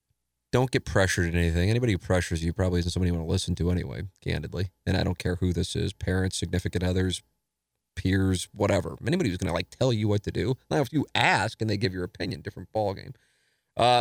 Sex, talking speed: male, 225 wpm